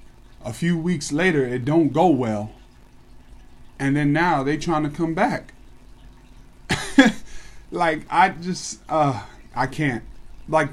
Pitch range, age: 120-145 Hz, 20-39